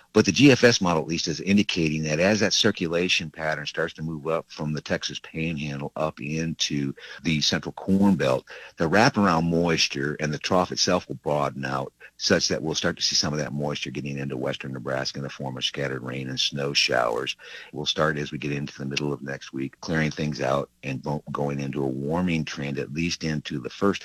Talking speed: 210 wpm